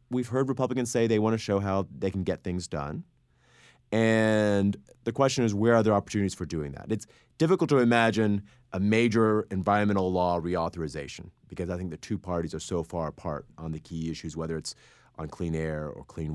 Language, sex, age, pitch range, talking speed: English, male, 30-49, 90-115 Hz, 200 wpm